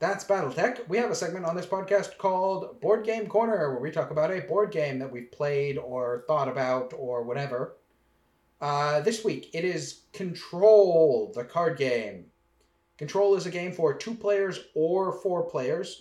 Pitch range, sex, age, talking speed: 145-200 Hz, male, 30-49, 175 wpm